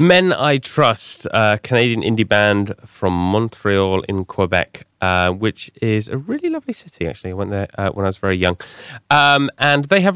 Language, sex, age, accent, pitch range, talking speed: English, male, 30-49, British, 95-135 Hz, 190 wpm